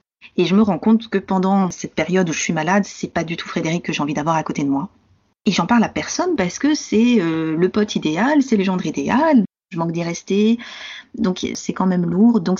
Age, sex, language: 30-49, female, French